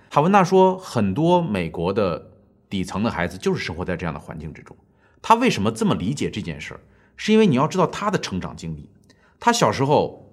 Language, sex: Chinese, male